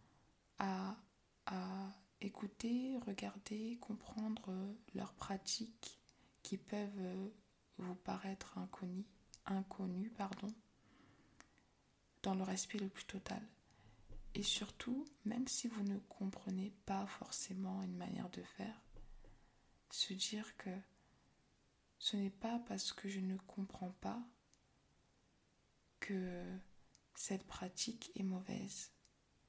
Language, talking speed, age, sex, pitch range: French, 100 wpm, 20-39, female, 190-210 Hz